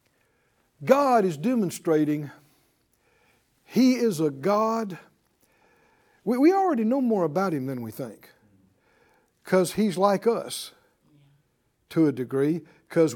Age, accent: 60-79, American